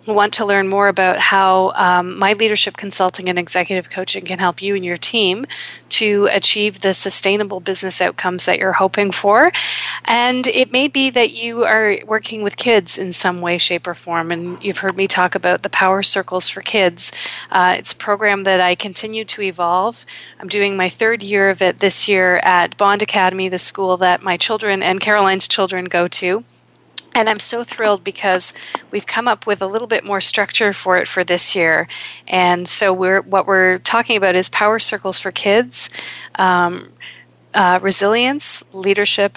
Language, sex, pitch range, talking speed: English, female, 180-205 Hz, 185 wpm